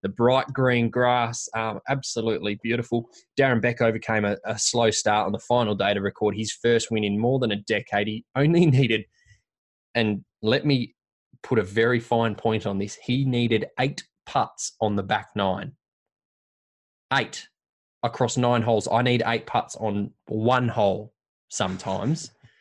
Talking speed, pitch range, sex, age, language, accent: 160 wpm, 105-120 Hz, male, 20-39, English, Australian